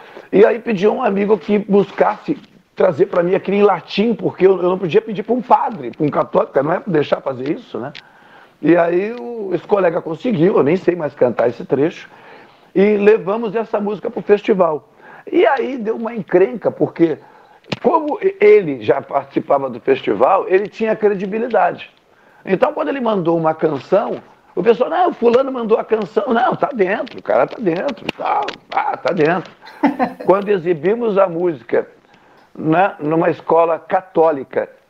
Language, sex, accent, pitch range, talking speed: Portuguese, male, Brazilian, 160-230 Hz, 170 wpm